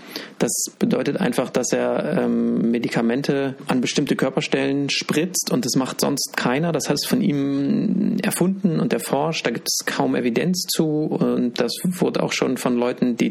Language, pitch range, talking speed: English, 130-185 Hz, 165 wpm